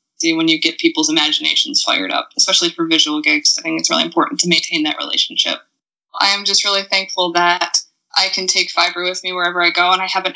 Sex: female